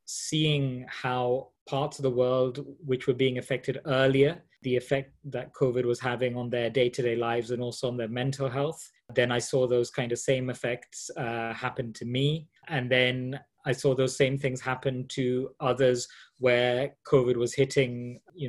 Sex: male